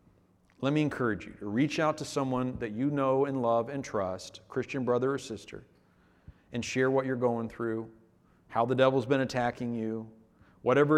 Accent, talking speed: American, 180 wpm